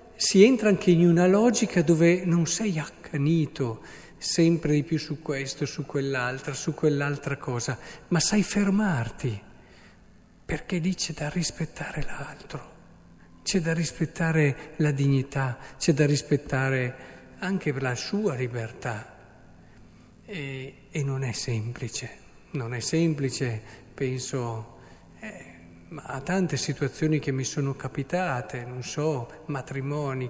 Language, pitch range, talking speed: Italian, 130-165 Hz, 125 wpm